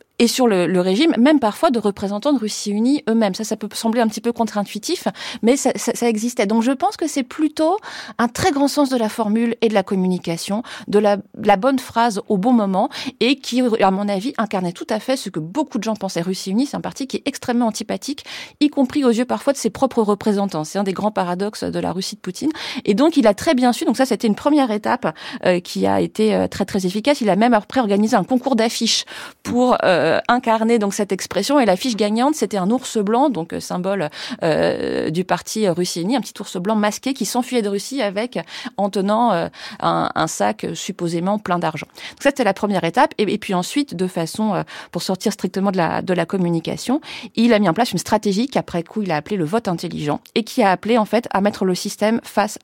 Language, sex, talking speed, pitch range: French, female, 235 wpm, 195-245 Hz